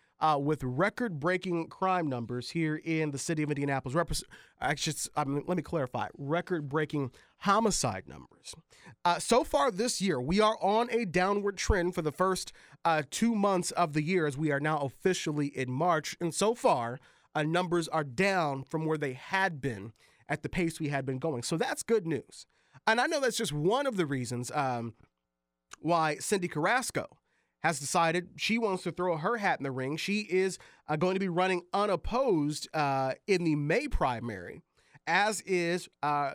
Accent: American